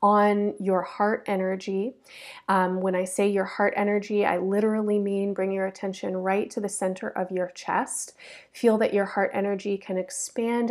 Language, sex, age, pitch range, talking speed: English, female, 30-49, 190-220 Hz, 175 wpm